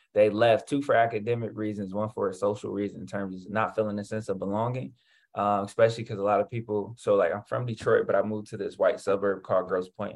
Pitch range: 100-115 Hz